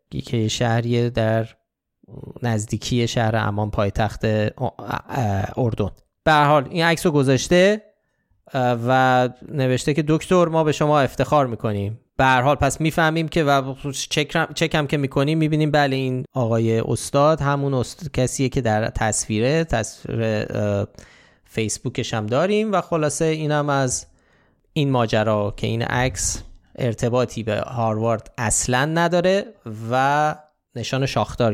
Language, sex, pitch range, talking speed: Persian, male, 115-145 Hz, 120 wpm